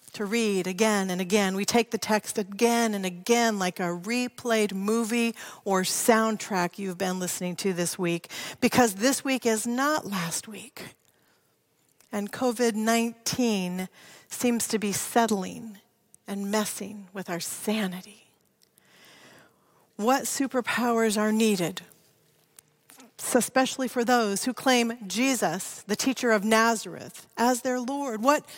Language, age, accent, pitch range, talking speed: English, 40-59, American, 205-255 Hz, 130 wpm